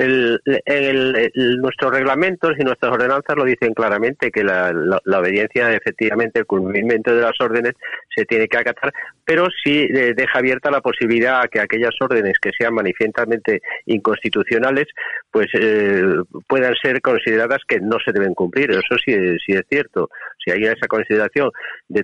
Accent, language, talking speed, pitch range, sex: Spanish, Spanish, 165 wpm, 105-145 Hz, male